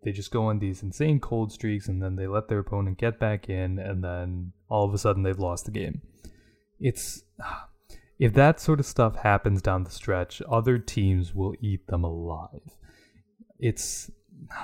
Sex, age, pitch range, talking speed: male, 20-39, 95-120 Hz, 180 wpm